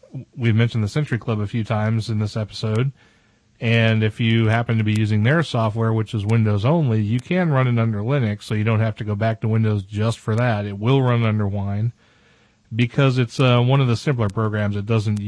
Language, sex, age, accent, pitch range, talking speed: English, male, 40-59, American, 105-125 Hz, 225 wpm